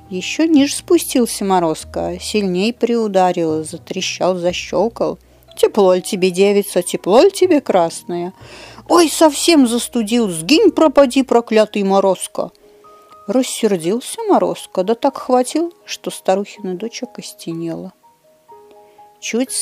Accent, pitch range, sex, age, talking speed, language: native, 180-250 Hz, female, 50-69, 100 wpm, Russian